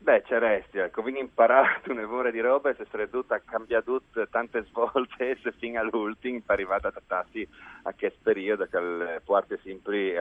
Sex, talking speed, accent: male, 165 wpm, native